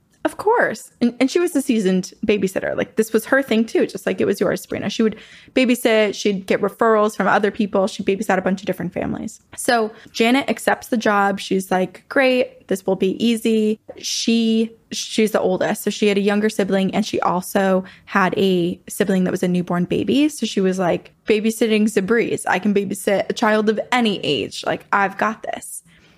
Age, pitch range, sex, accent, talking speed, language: 20-39, 190-225 Hz, female, American, 200 wpm, English